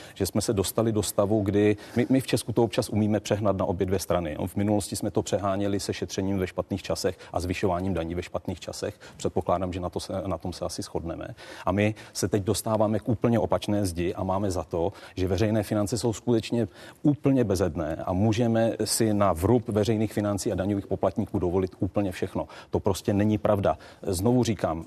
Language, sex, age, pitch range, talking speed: Czech, male, 40-59, 95-110 Hz, 205 wpm